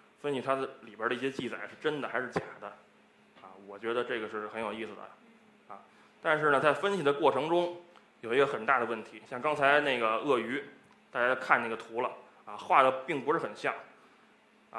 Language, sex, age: Chinese, male, 20-39